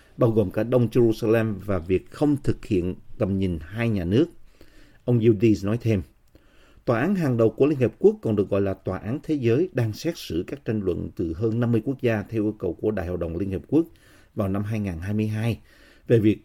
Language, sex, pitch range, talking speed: Vietnamese, male, 95-120 Hz, 225 wpm